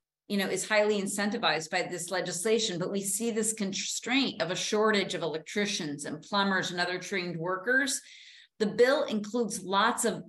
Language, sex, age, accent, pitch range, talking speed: English, female, 40-59, American, 175-215 Hz, 170 wpm